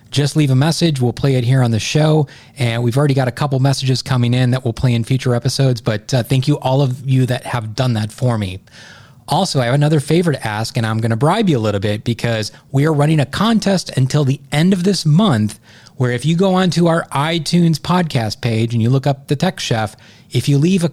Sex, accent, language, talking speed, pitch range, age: male, American, English, 245 wpm, 120-150 Hz, 30-49